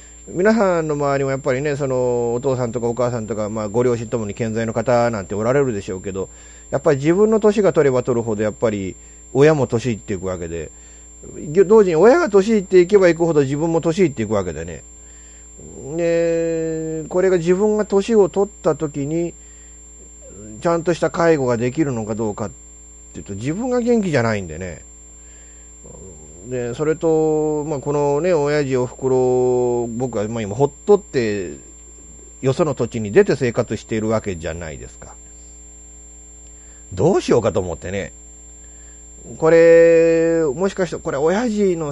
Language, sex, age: Japanese, male, 40-59